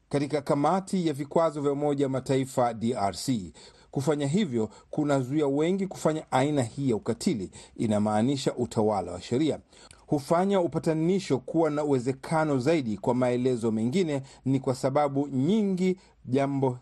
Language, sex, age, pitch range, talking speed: Swahili, male, 40-59, 125-160 Hz, 125 wpm